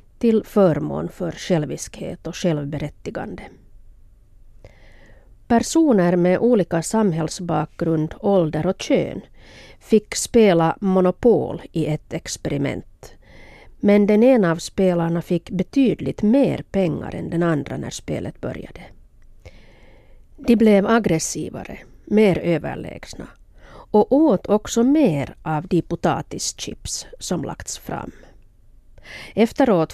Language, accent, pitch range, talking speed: Swedish, Finnish, 165-210 Hz, 100 wpm